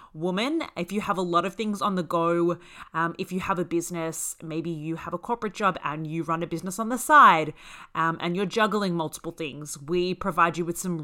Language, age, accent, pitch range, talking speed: English, 30-49, Australian, 160-190 Hz, 230 wpm